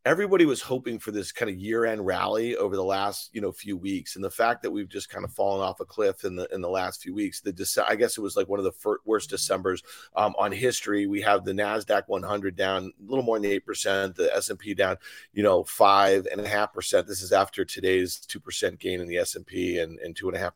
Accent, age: American, 40-59